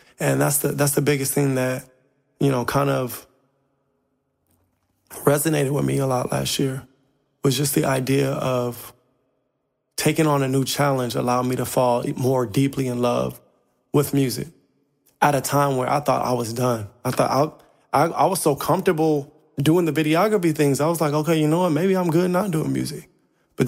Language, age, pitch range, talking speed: English, 20-39, 125-145 Hz, 190 wpm